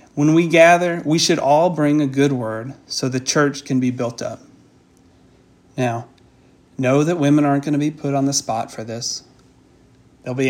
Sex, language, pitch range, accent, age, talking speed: male, English, 120-145 Hz, American, 40-59, 190 wpm